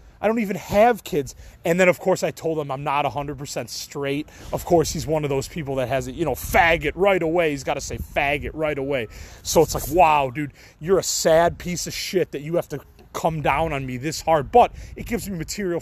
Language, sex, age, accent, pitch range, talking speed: English, male, 30-49, American, 145-185 Hz, 245 wpm